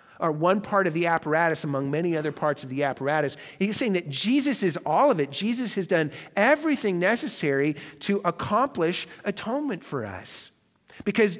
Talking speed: 170 wpm